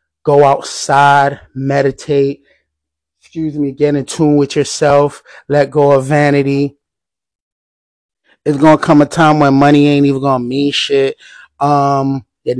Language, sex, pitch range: English, male, 140-175 Hz